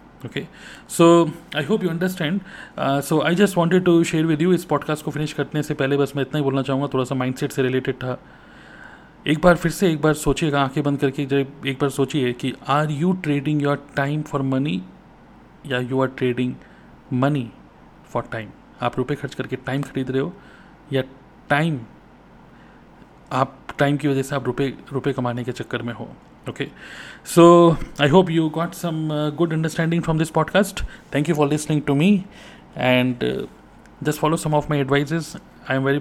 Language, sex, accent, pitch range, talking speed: Hindi, male, native, 130-155 Hz, 190 wpm